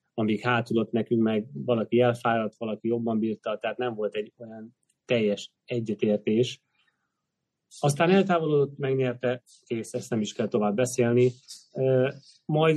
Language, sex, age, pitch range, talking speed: Hungarian, male, 30-49, 115-135 Hz, 125 wpm